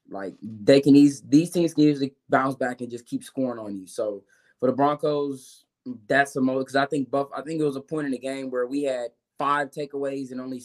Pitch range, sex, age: 130-145 Hz, male, 20-39